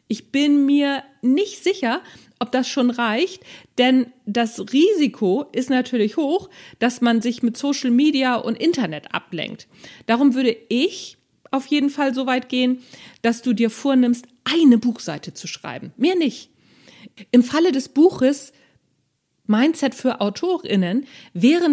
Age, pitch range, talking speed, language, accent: 40-59, 230-285 Hz, 140 wpm, German, German